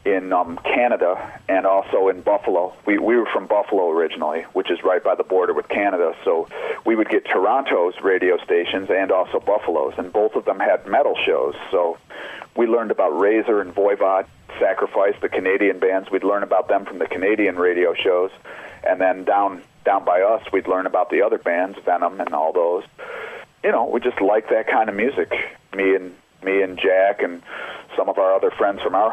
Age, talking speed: 40-59, 205 wpm